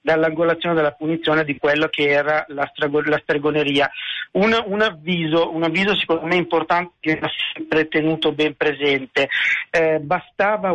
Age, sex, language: 50-69, male, Italian